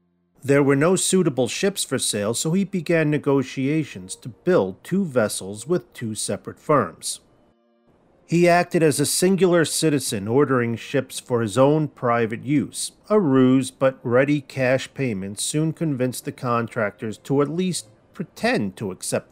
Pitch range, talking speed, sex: 110-155 Hz, 150 wpm, male